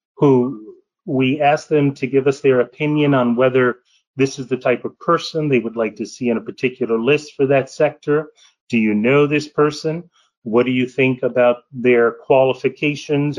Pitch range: 130-170 Hz